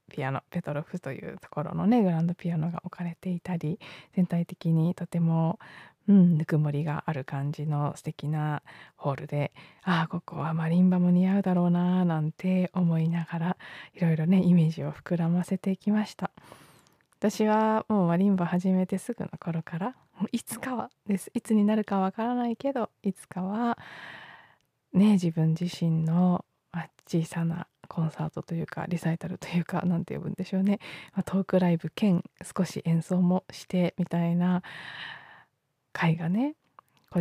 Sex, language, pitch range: female, Japanese, 165-190 Hz